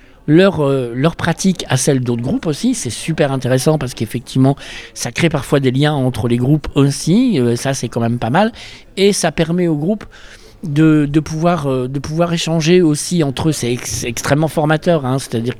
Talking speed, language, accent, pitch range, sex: 200 wpm, French, French, 120-160 Hz, male